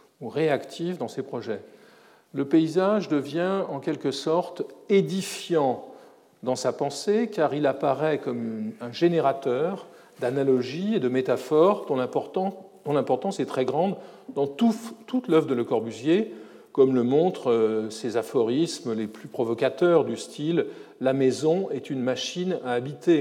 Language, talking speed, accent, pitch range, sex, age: French, 140 wpm, French, 130-190 Hz, male, 50-69